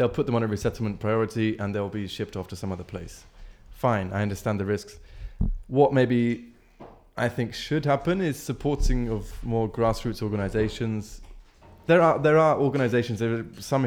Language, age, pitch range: English, 20-39, 100-120 Hz